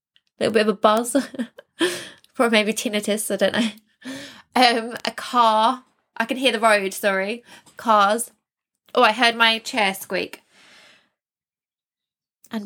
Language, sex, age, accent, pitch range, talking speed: English, female, 10-29, British, 205-255 Hz, 135 wpm